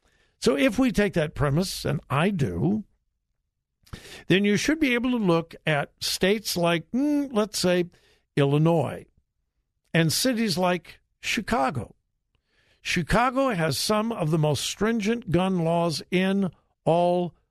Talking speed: 125 wpm